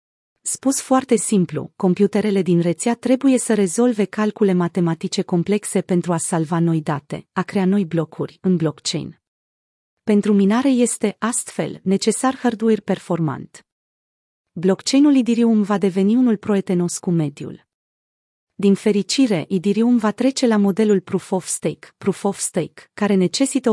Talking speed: 135 wpm